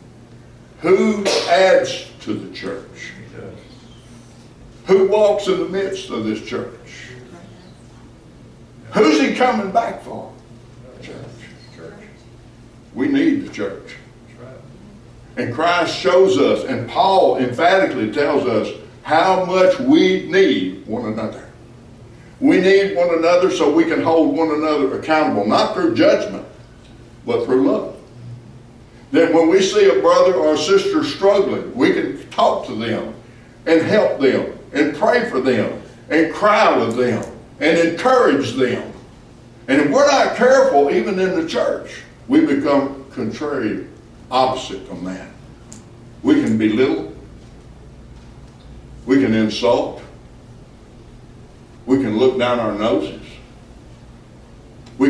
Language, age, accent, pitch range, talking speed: English, 60-79, American, 120-195 Hz, 125 wpm